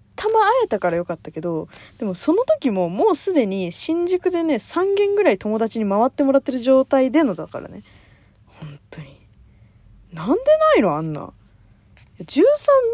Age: 20-39